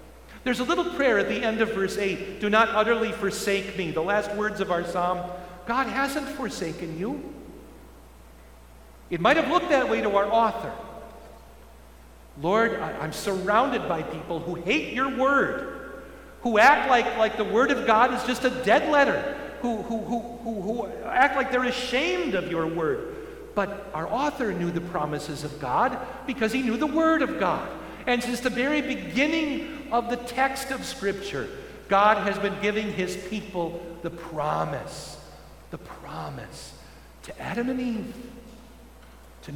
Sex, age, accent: male, 50-69, American